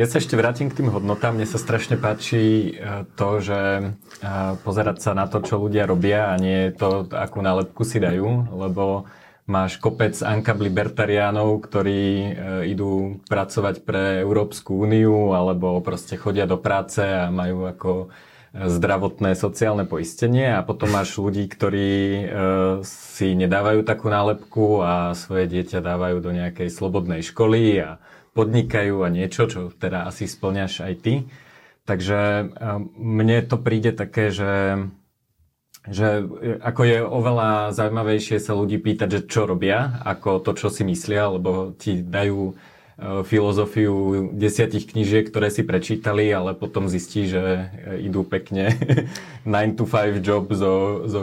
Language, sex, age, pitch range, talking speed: Slovak, male, 30-49, 95-110 Hz, 140 wpm